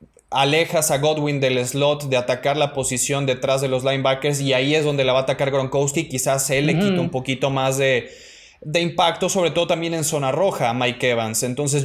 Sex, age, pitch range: male, 20-39, 130-155 Hz